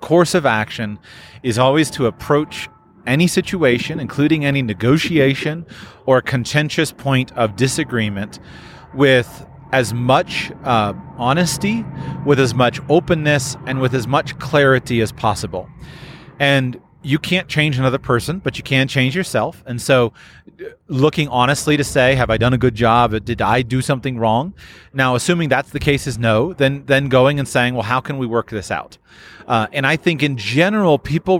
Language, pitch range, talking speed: English, 120-150 Hz, 165 wpm